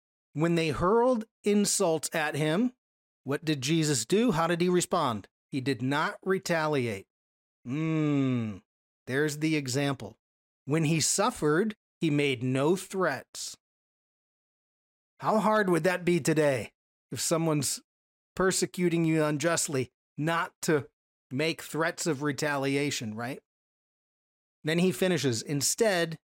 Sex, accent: male, American